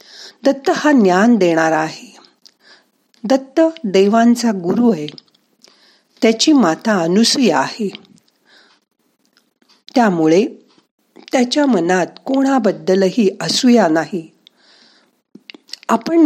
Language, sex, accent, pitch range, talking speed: Marathi, female, native, 175-255 Hz, 75 wpm